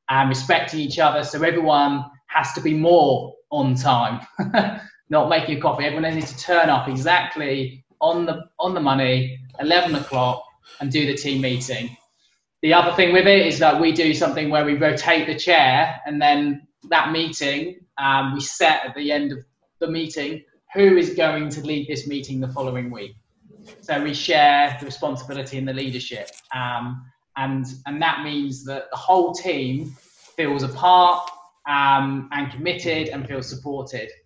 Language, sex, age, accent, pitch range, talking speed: English, male, 20-39, British, 135-160 Hz, 170 wpm